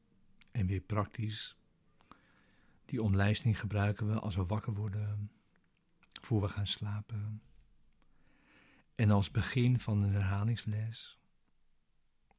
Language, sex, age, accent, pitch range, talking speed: Dutch, male, 60-79, Dutch, 100-110 Hz, 100 wpm